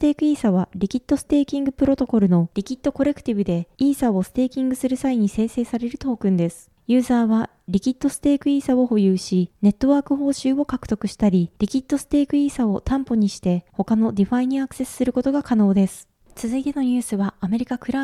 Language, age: Japanese, 20-39